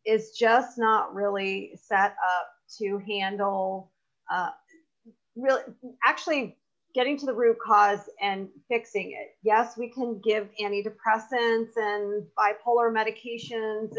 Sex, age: female, 40-59